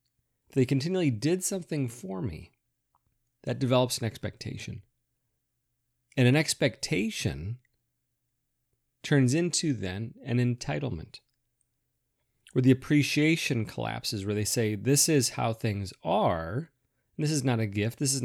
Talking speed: 120 wpm